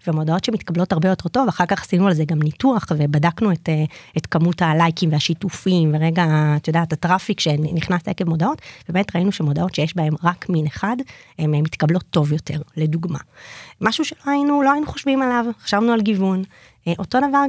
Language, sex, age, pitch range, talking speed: Hebrew, female, 30-49, 170-240 Hz, 170 wpm